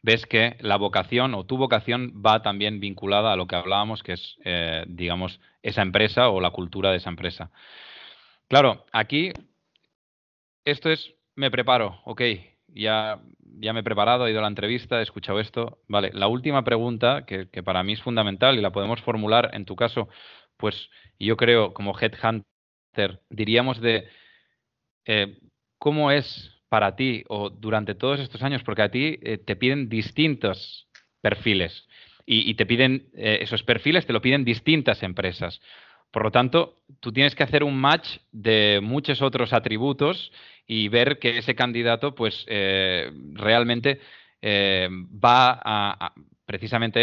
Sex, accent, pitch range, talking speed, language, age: male, Spanish, 100-130 Hz, 160 wpm, Spanish, 20-39